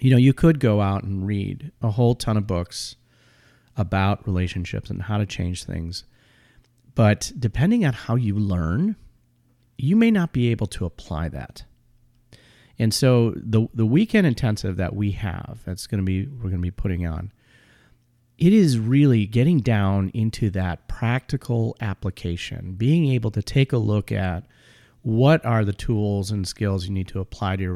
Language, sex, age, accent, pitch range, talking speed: English, male, 40-59, American, 100-125 Hz, 175 wpm